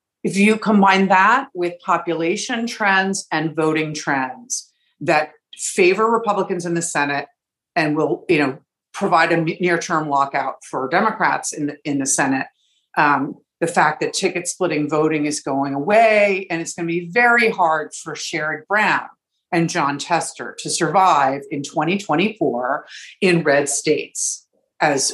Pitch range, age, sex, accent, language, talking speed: 150-200 Hz, 50-69, female, American, English, 140 wpm